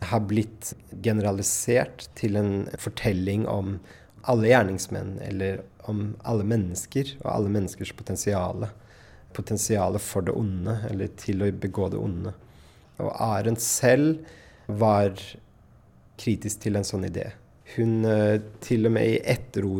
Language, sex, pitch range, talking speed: Danish, male, 100-115 Hz, 120 wpm